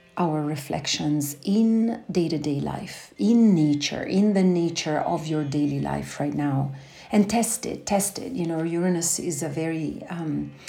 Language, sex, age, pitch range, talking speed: English, female, 40-59, 145-175 Hz, 155 wpm